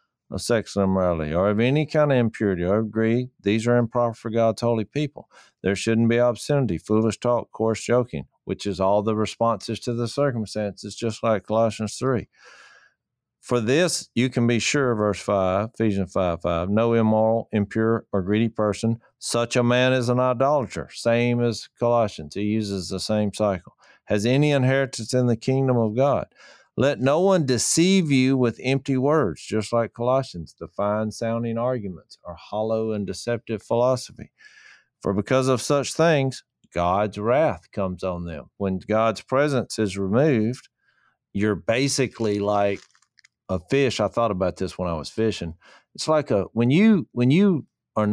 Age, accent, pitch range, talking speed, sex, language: 50-69, American, 105-125 Hz, 165 wpm, male, English